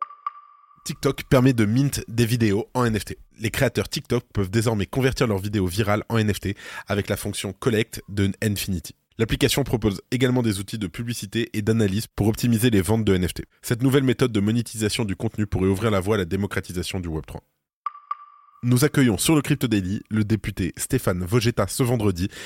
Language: French